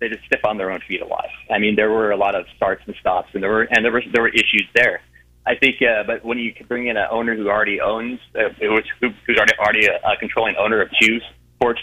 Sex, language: male, English